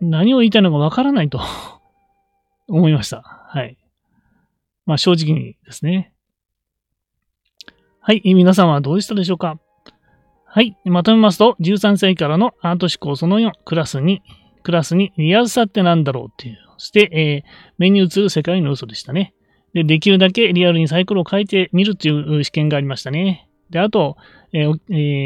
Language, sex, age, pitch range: Japanese, male, 30-49, 155-205 Hz